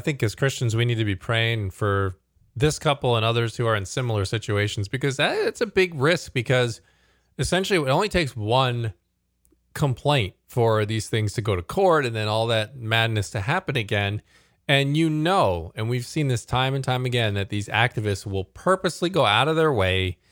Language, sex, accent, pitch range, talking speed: English, male, American, 105-130 Hz, 200 wpm